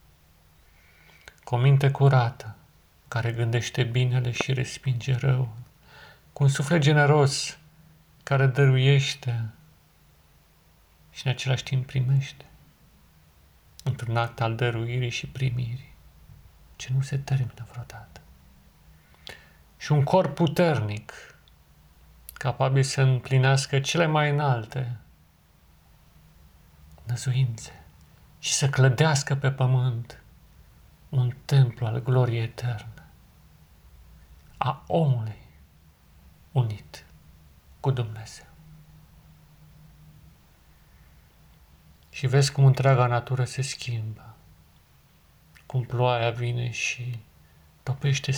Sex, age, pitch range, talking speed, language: male, 40-59, 110-140 Hz, 85 wpm, Romanian